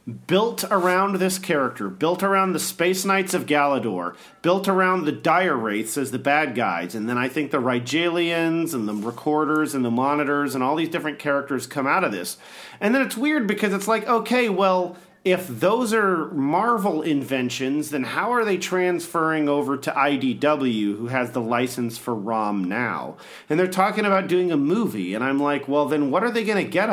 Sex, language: male, English